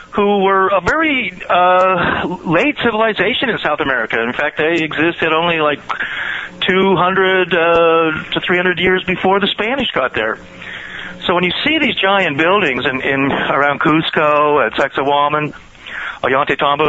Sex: male